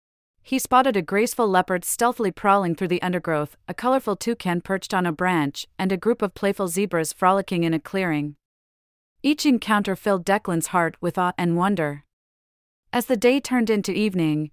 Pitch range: 165-210 Hz